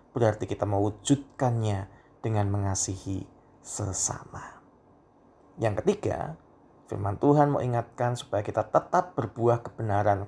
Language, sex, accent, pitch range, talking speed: Indonesian, male, native, 100-130 Hz, 95 wpm